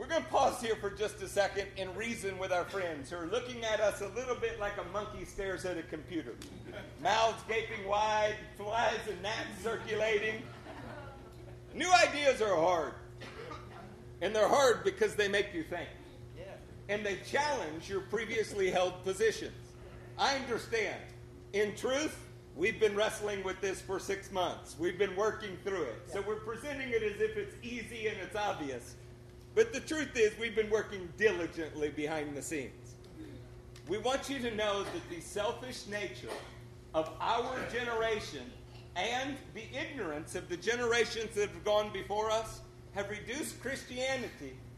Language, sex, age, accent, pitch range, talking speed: English, male, 40-59, American, 185-230 Hz, 160 wpm